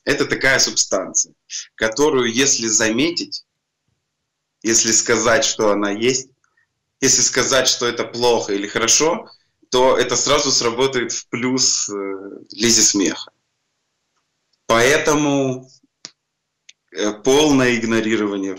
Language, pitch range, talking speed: Russian, 110-140 Hz, 100 wpm